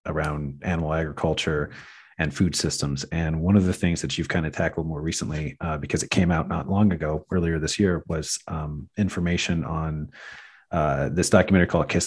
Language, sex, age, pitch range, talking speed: English, male, 30-49, 80-95 Hz, 190 wpm